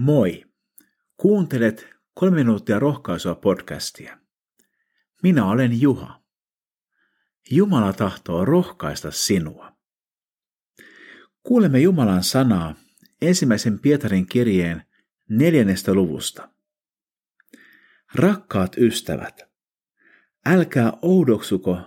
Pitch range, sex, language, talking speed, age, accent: 95-155 Hz, male, Finnish, 70 wpm, 50-69, native